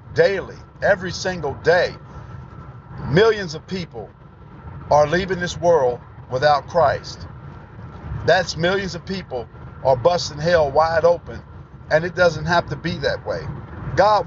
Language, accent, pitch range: English, American, 150-180 Hz